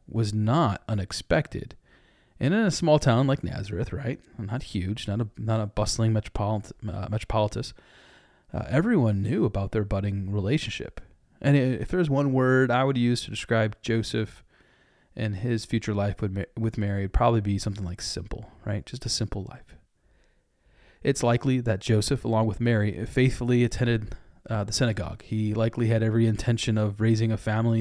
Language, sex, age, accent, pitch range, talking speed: English, male, 30-49, American, 100-120 Hz, 170 wpm